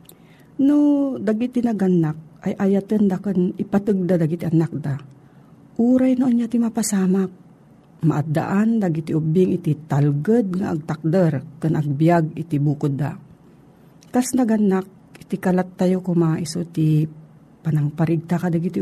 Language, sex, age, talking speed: Filipino, female, 50-69, 125 wpm